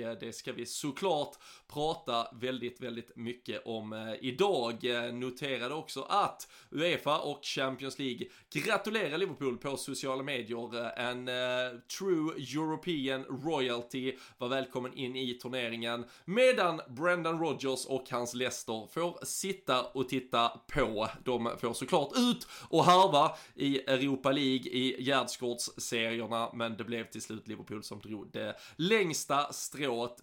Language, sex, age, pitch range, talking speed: Swedish, male, 20-39, 120-155 Hz, 130 wpm